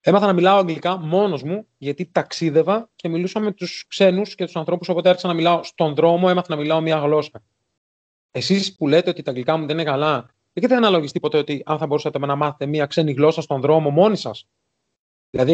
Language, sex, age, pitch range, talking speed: Greek, male, 30-49, 140-195 Hz, 210 wpm